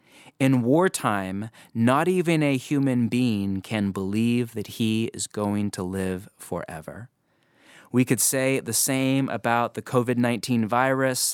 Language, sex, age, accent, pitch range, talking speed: English, male, 30-49, American, 110-140 Hz, 130 wpm